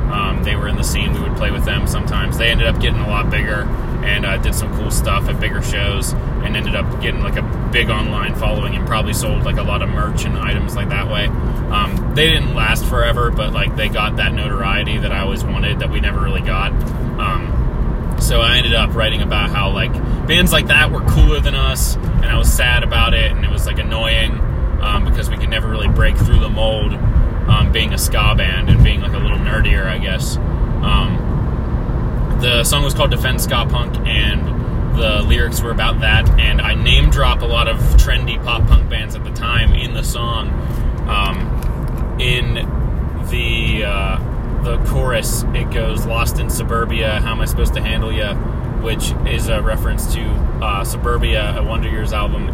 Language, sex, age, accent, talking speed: English, male, 20-39, American, 205 wpm